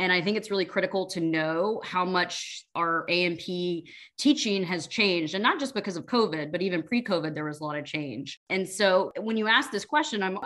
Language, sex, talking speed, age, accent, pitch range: English, female, 220 wpm, 20-39, American, 165-215 Hz